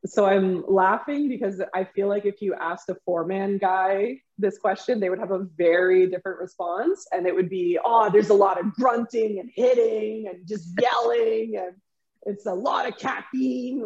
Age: 20-39